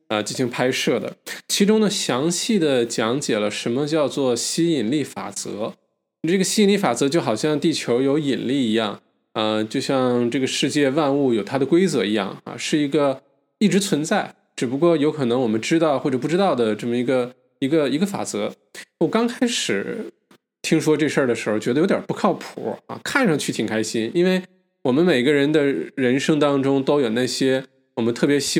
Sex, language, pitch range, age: male, Chinese, 120-165 Hz, 20-39